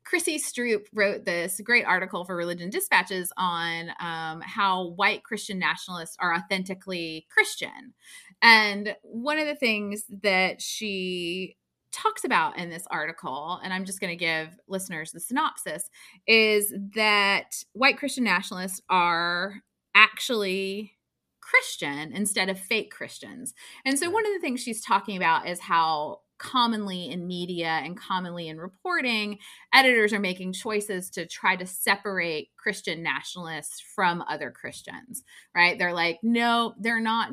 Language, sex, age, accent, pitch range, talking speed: English, female, 30-49, American, 175-235 Hz, 140 wpm